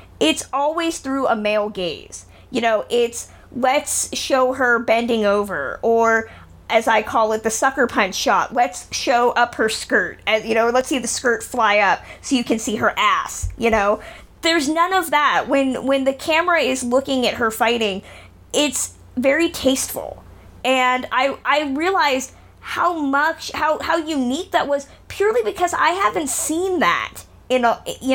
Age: 20-39